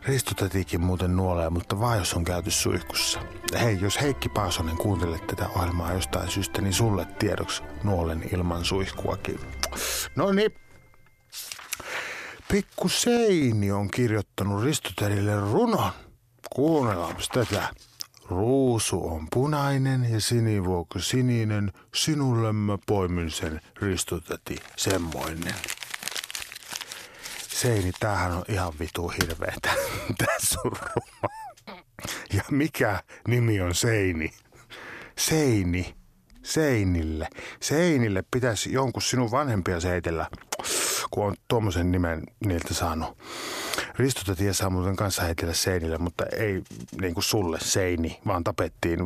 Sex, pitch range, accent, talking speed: male, 90-120 Hz, native, 105 wpm